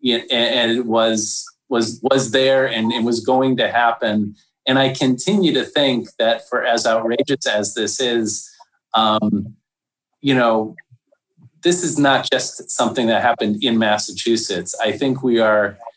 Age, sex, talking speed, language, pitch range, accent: 30-49, male, 155 wpm, English, 110-135 Hz, American